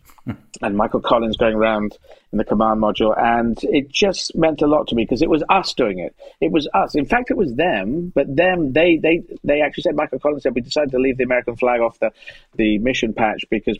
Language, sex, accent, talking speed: English, male, British, 235 wpm